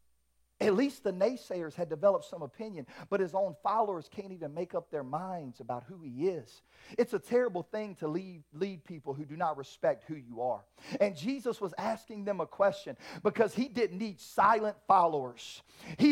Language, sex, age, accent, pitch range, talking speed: English, male, 40-59, American, 175-265 Hz, 190 wpm